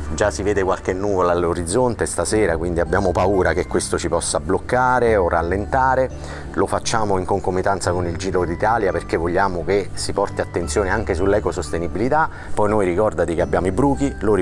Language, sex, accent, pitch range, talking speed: Italian, male, native, 85-105 Hz, 170 wpm